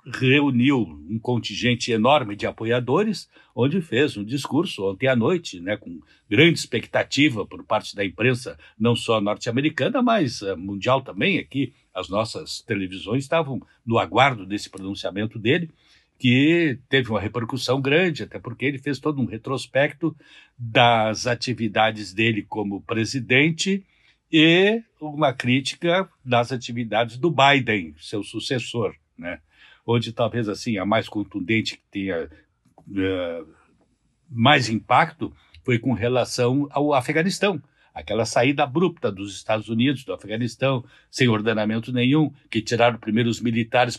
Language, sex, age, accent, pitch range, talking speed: Portuguese, male, 60-79, Brazilian, 110-135 Hz, 130 wpm